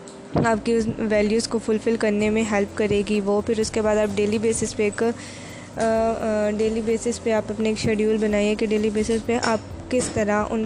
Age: 20-39